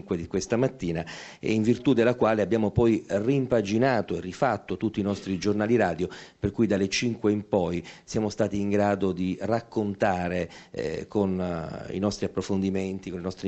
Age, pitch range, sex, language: 40-59, 95-120 Hz, male, Italian